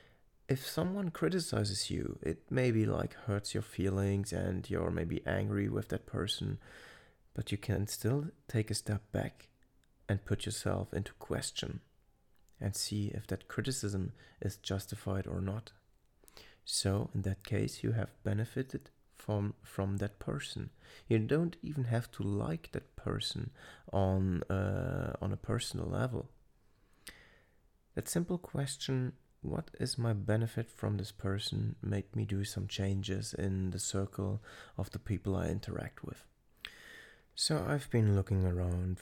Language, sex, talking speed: English, male, 145 wpm